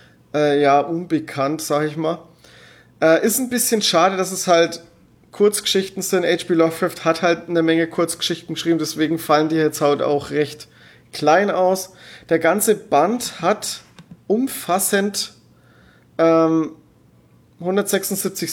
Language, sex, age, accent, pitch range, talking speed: German, male, 30-49, German, 150-180 Hz, 130 wpm